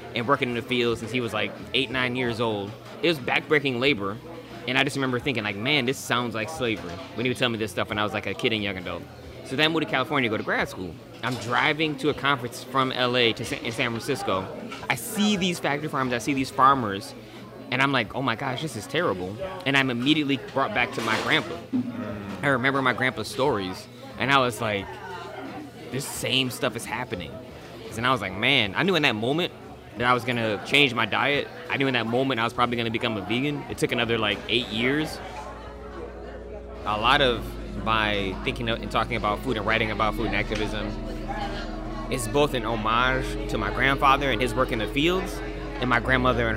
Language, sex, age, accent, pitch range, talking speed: English, male, 20-39, American, 110-135 Hz, 225 wpm